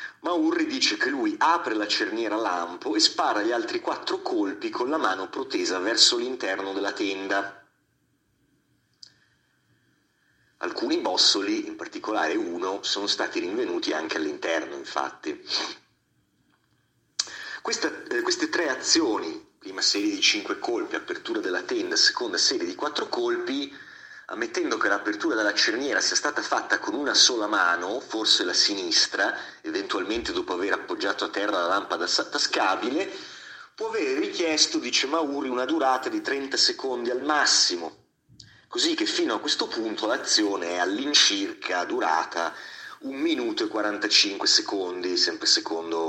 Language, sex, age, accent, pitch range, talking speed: Italian, male, 30-49, native, 330-370 Hz, 135 wpm